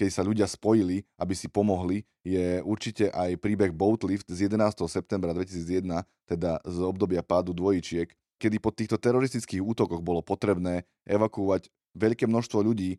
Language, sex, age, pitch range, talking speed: Slovak, male, 20-39, 90-105 Hz, 150 wpm